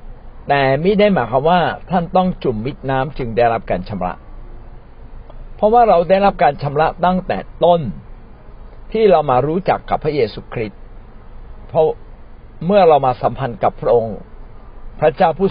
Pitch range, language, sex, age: 105-160 Hz, Thai, male, 60-79